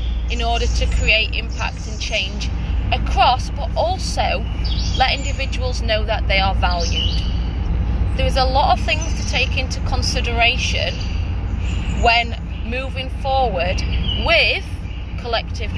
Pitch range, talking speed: 85-95 Hz, 120 wpm